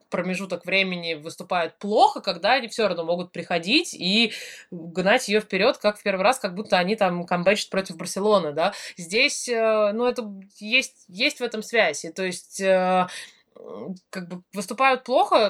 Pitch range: 180-230 Hz